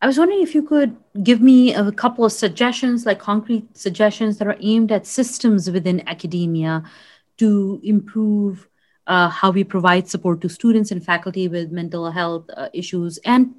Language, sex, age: English, female, 30-49